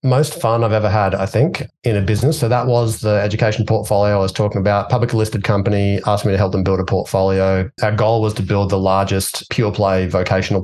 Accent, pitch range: Australian, 95-115 Hz